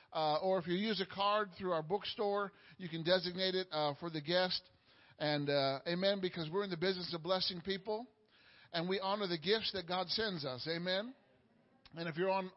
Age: 50-69